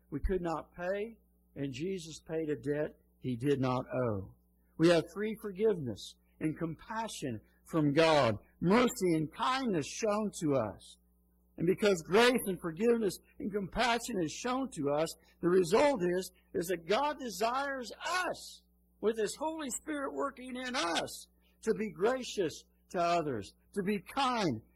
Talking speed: 150 wpm